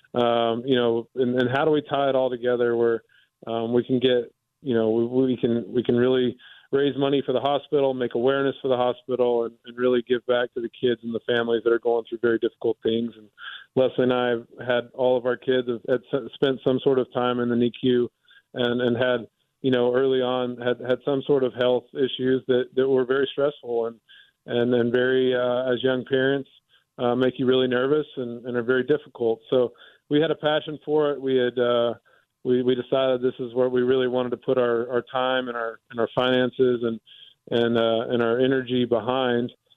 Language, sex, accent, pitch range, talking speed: English, male, American, 120-130 Hz, 220 wpm